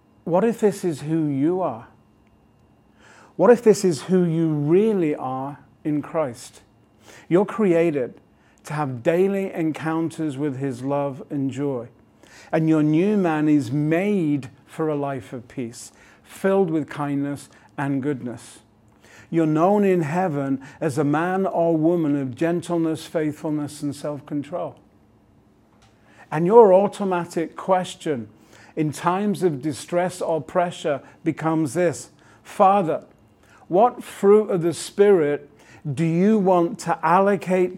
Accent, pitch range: British, 135-175 Hz